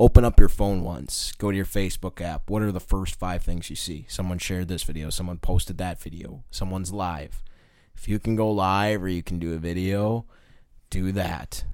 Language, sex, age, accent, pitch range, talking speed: English, male, 20-39, American, 85-100 Hz, 210 wpm